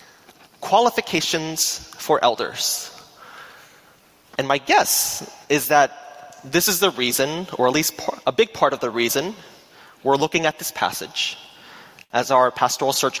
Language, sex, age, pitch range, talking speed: English, male, 20-39, 130-180 Hz, 135 wpm